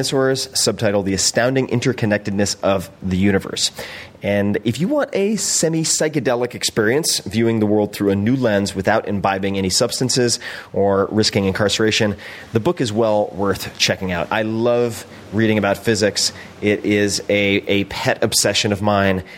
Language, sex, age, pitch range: English, male, 30-49, 100-120 Hz